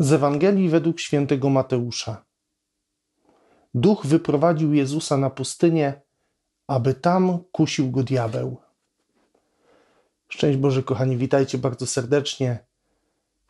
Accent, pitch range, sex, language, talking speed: native, 135-155 Hz, male, Polish, 100 wpm